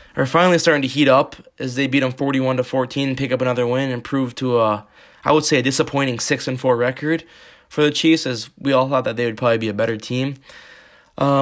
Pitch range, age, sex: 125-140 Hz, 20-39, male